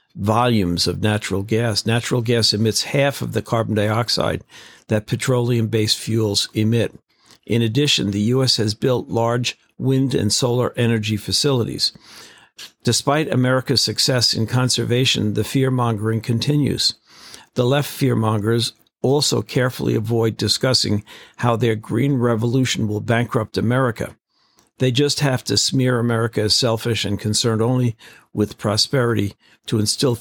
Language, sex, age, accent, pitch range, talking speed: English, male, 50-69, American, 110-125 Hz, 130 wpm